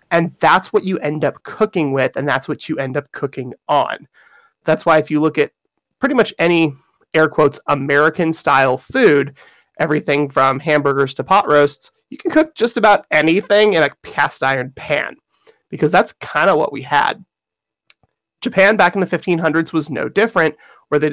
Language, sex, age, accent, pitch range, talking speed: English, male, 20-39, American, 145-195 Hz, 180 wpm